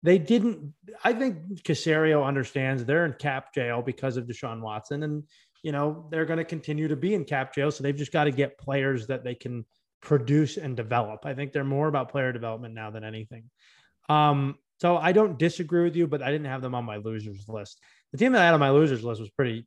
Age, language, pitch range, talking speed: 20-39, English, 130-180 Hz, 230 wpm